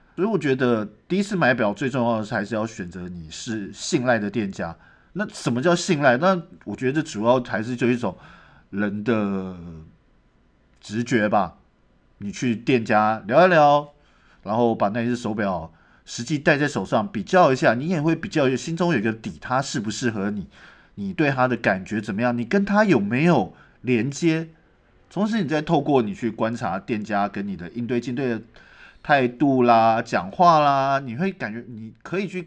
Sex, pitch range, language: male, 110-160 Hz, Chinese